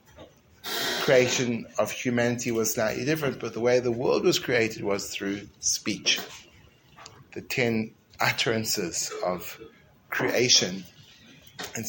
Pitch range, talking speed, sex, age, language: 110-130 Hz, 105 wpm, male, 30-49, English